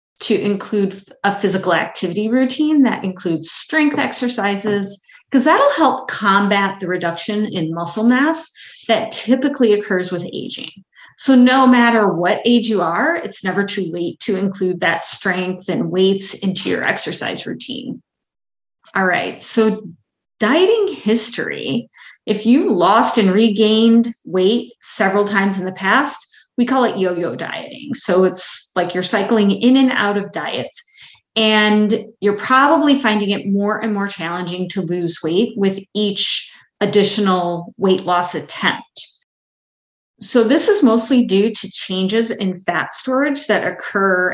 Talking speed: 145 wpm